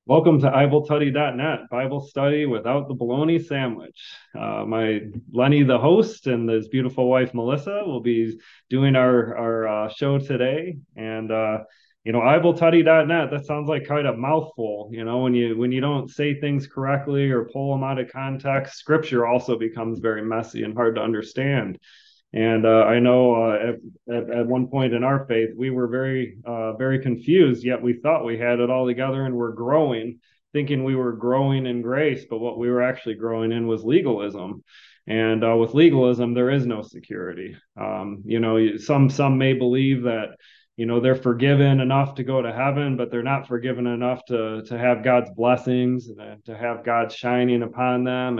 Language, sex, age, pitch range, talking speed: English, male, 30-49, 115-135 Hz, 185 wpm